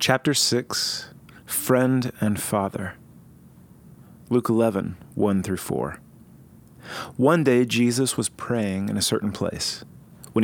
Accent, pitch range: American, 95-120 Hz